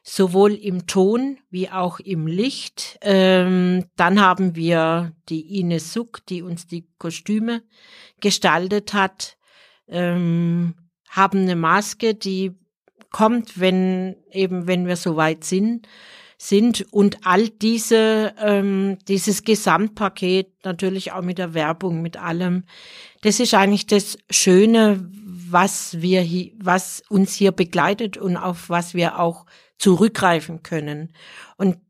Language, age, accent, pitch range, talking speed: German, 50-69, German, 175-205 Hz, 125 wpm